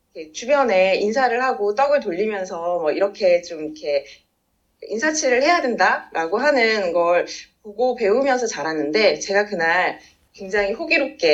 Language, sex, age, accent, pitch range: Korean, female, 20-39, native, 190-295 Hz